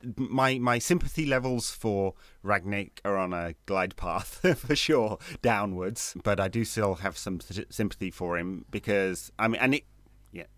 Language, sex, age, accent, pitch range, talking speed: English, male, 30-49, British, 90-110 Hz, 170 wpm